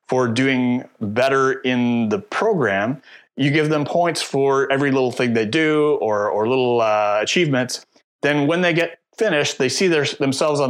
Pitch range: 120-150 Hz